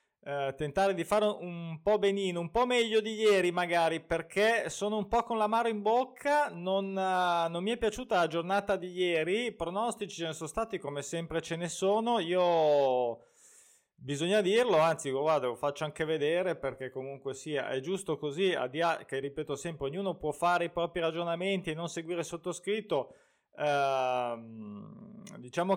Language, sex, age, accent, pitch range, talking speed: Italian, male, 20-39, native, 155-200 Hz, 175 wpm